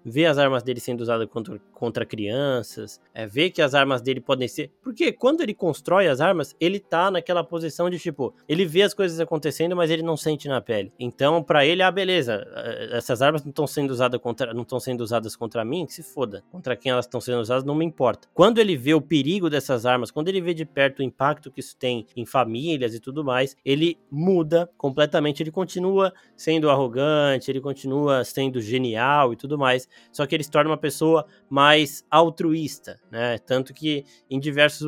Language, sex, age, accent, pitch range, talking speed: Portuguese, male, 20-39, Brazilian, 125-160 Hz, 200 wpm